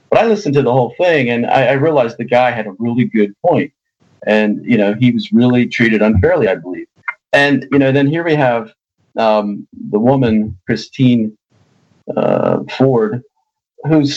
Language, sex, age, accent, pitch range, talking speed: English, male, 40-59, American, 110-145 Hz, 180 wpm